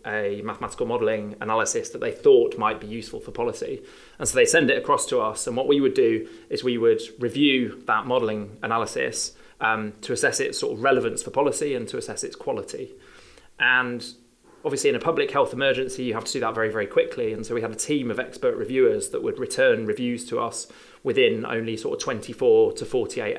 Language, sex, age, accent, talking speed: English, male, 30-49, British, 215 wpm